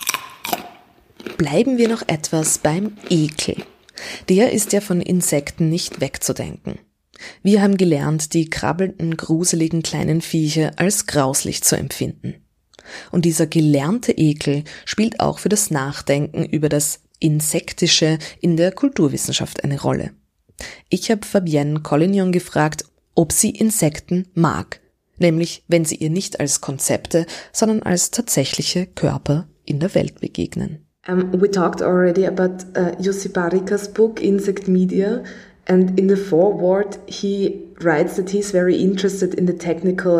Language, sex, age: German, female, 20-39